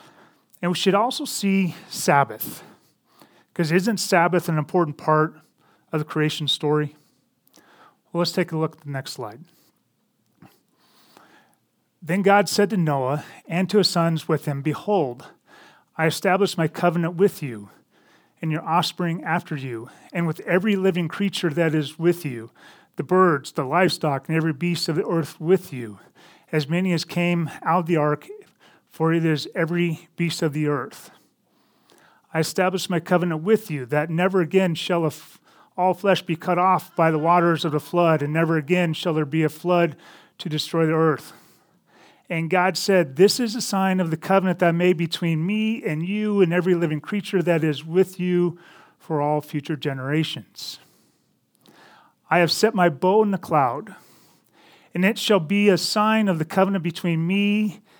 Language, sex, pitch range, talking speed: English, male, 155-185 Hz, 170 wpm